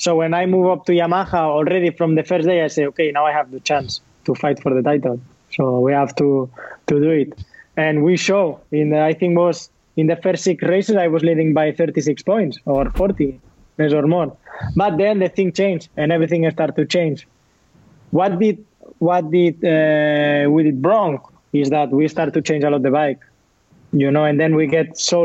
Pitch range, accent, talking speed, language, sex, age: 150-185 Hz, Spanish, 210 wpm, English, male, 20-39